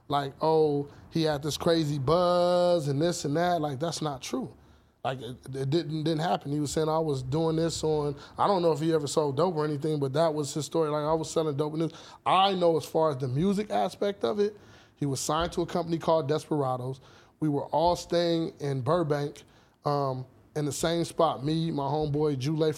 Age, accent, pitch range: 20-39, American, 145-170 Hz